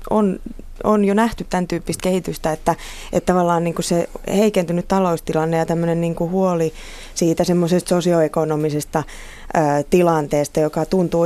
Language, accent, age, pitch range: Finnish, native, 20-39, 160-180 Hz